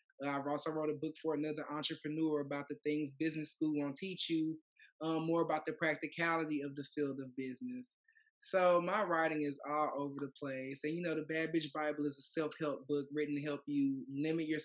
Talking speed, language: 210 wpm, English